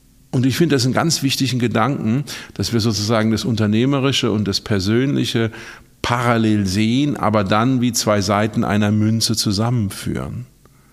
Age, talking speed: 50-69, 145 wpm